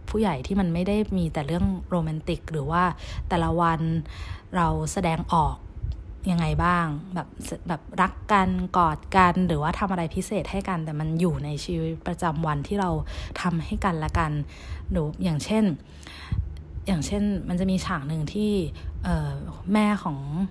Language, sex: Thai, female